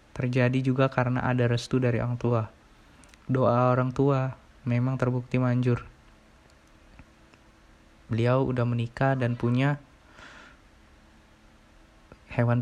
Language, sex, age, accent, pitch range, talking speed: Indonesian, male, 20-39, native, 120-130 Hz, 95 wpm